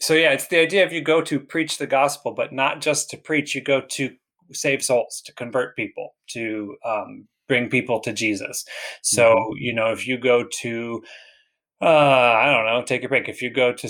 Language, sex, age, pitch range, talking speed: English, male, 20-39, 110-135 Hz, 210 wpm